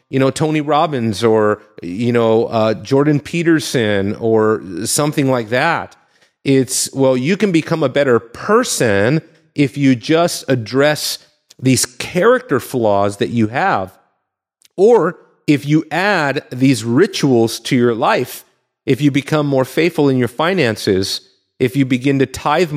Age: 40-59